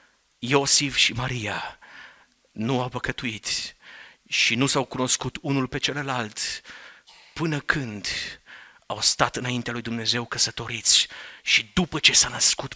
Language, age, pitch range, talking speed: Romanian, 30-49, 120-180 Hz, 120 wpm